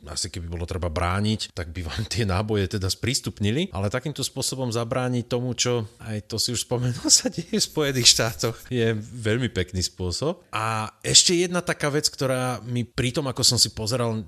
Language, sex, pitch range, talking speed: Slovak, male, 100-125 Hz, 190 wpm